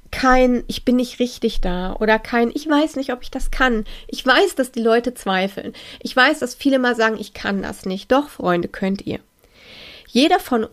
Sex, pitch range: female, 205-255 Hz